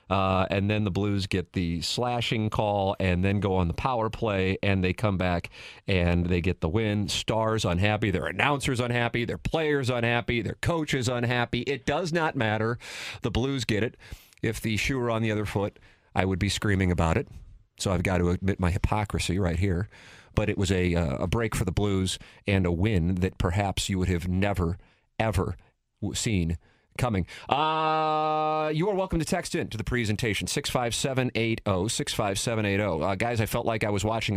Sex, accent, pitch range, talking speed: male, American, 95-120 Hz, 205 wpm